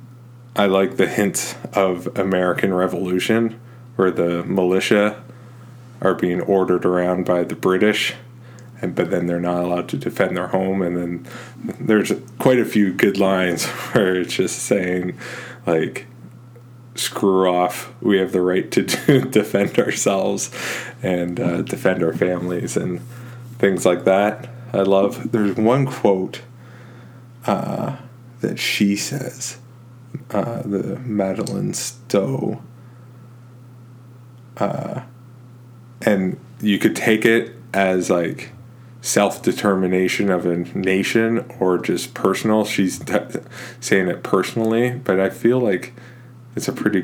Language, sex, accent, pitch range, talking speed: English, male, American, 95-120 Hz, 125 wpm